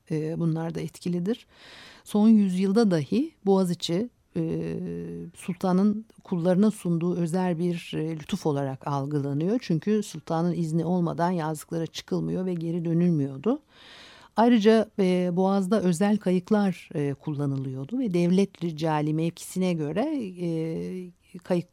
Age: 60-79